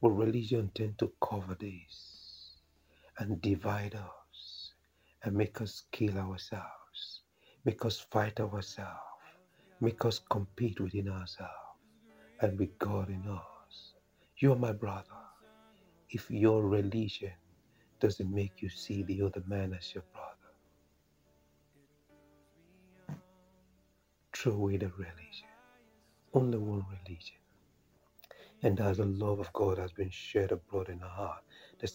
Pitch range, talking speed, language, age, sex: 90-105 Hz, 125 wpm, English, 60-79, male